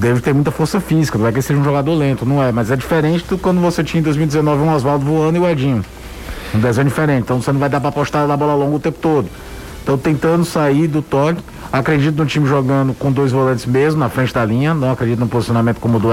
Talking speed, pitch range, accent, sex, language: 255 wpm, 125-165 Hz, Brazilian, male, Portuguese